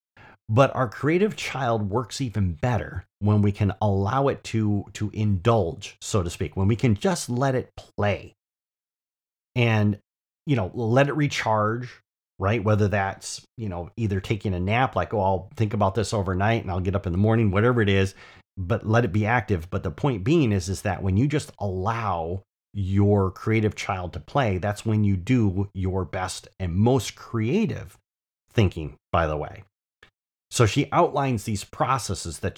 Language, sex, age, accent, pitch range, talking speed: English, male, 30-49, American, 95-120 Hz, 180 wpm